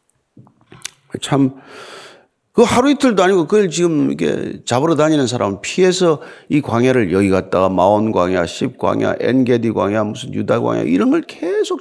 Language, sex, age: Korean, male, 40-59